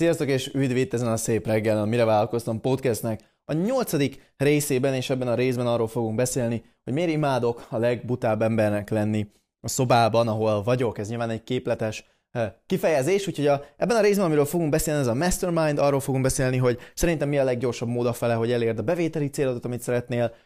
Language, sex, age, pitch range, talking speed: Hungarian, male, 20-39, 110-140 Hz, 190 wpm